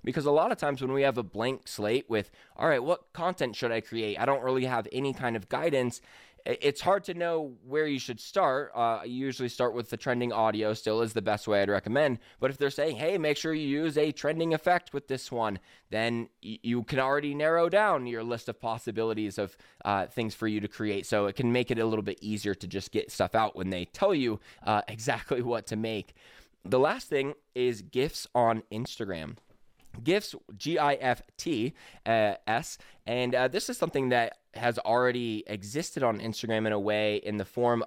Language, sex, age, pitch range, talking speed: English, male, 20-39, 110-140 Hz, 210 wpm